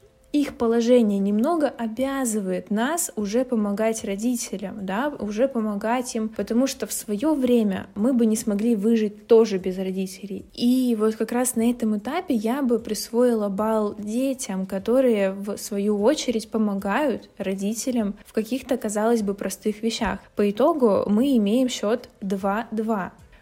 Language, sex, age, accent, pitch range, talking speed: Russian, female, 20-39, native, 205-240 Hz, 140 wpm